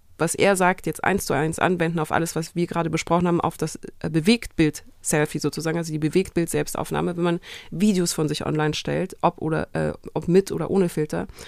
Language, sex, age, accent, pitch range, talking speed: German, female, 30-49, German, 160-195 Hz, 195 wpm